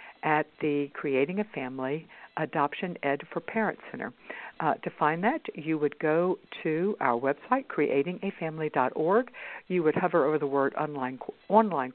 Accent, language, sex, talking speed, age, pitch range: American, English, female, 145 wpm, 60-79, 145-200 Hz